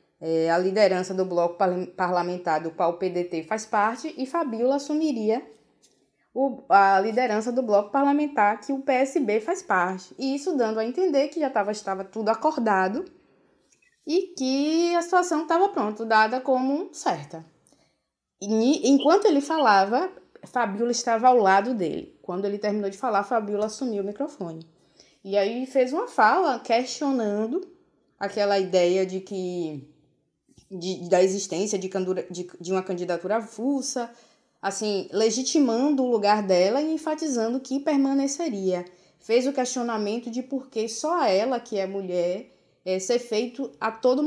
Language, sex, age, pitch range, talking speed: Portuguese, female, 20-39, 190-270 Hz, 135 wpm